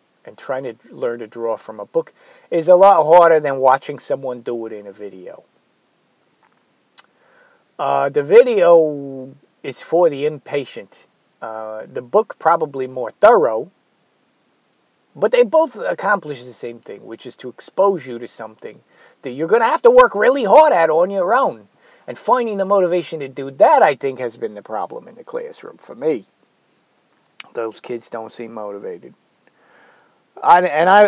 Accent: American